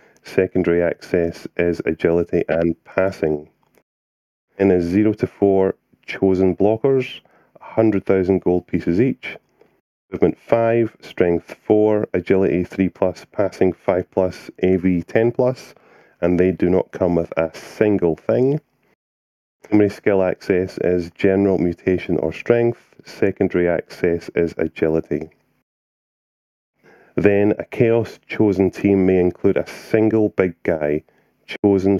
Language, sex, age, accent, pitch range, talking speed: English, male, 30-49, British, 85-105 Hz, 120 wpm